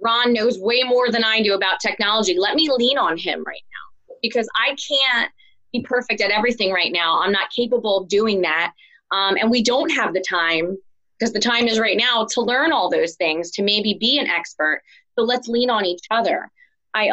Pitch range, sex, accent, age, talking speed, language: 195-250 Hz, female, American, 20-39, 215 wpm, English